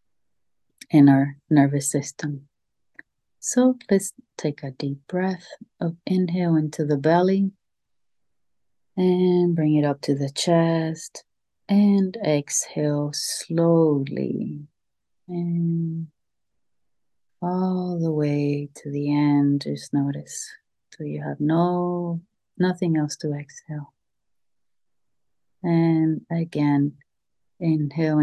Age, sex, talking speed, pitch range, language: 30-49, female, 95 wpm, 145-180 Hz, English